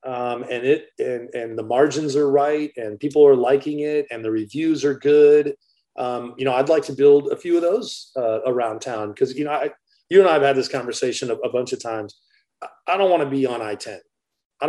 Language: English